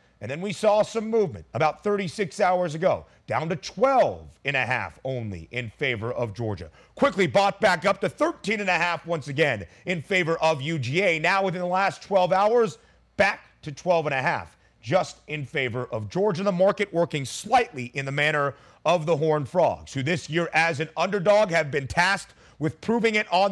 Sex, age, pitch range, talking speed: male, 40-59, 135-190 Hz, 195 wpm